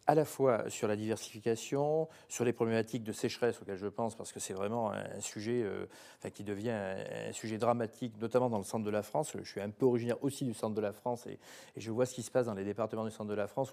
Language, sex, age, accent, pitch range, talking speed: French, male, 40-59, French, 115-150 Hz, 260 wpm